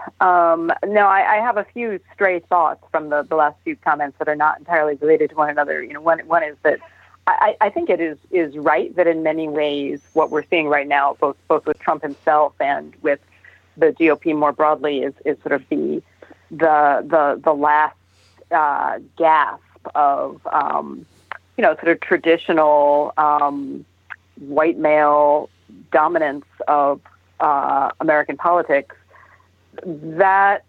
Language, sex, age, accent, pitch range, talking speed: English, female, 40-59, American, 145-170 Hz, 160 wpm